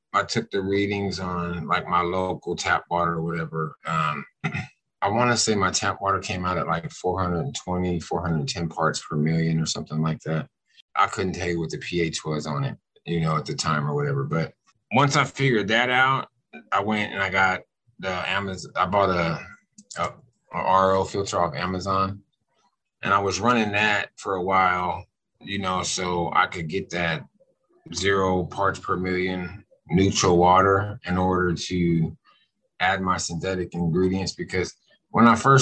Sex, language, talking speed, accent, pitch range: male, English, 170 wpm, American, 90-110 Hz